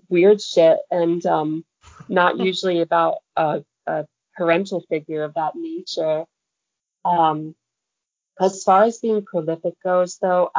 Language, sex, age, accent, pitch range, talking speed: English, female, 30-49, American, 165-190 Hz, 125 wpm